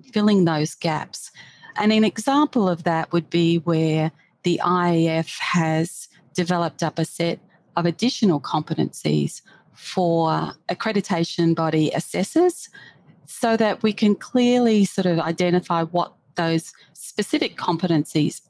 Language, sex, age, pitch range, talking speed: English, female, 40-59, 160-195 Hz, 120 wpm